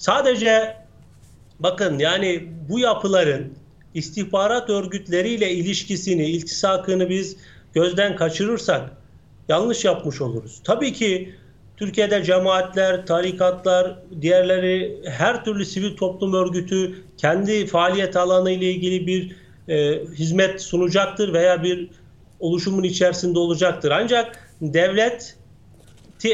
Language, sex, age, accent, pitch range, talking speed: Turkish, male, 40-59, native, 170-205 Hz, 95 wpm